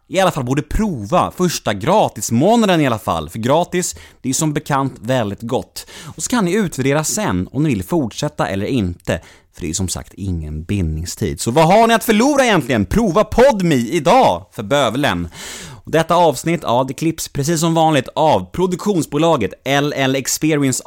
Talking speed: 180 wpm